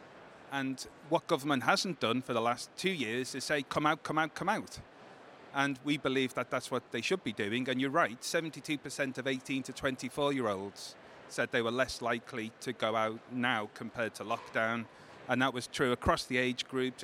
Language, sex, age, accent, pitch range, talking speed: English, male, 30-49, British, 125-150 Hz, 195 wpm